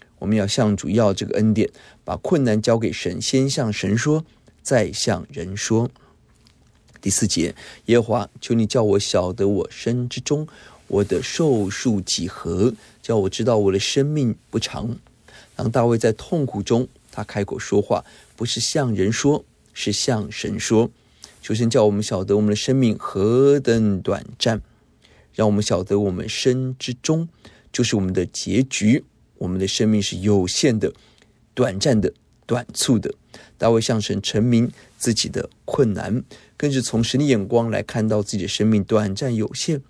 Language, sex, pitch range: Chinese, male, 105-120 Hz